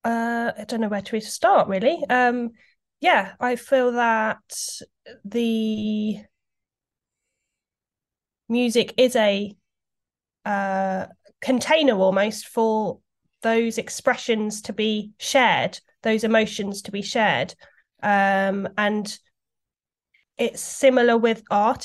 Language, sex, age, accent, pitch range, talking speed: English, female, 20-39, British, 200-245 Hz, 100 wpm